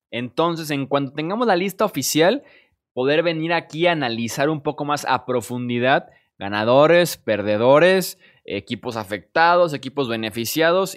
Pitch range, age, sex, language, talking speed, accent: 125-180 Hz, 20-39, male, Spanish, 125 wpm, Mexican